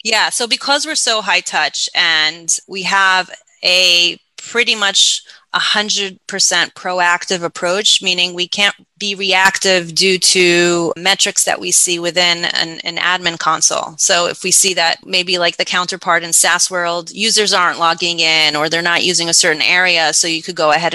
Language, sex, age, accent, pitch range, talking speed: English, female, 30-49, American, 170-195 Hz, 170 wpm